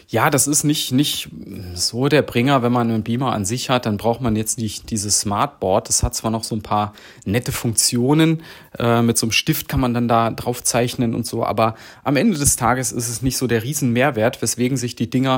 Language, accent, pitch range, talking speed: German, German, 120-150 Hz, 230 wpm